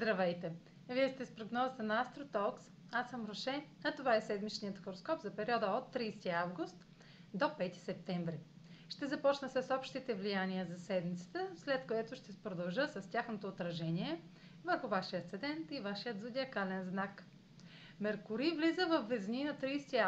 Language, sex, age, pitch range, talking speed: Bulgarian, female, 30-49, 180-250 Hz, 150 wpm